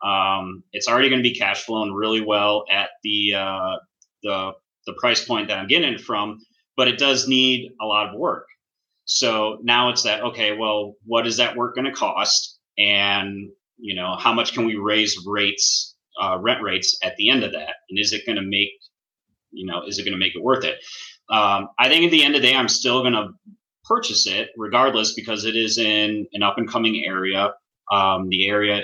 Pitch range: 100-125 Hz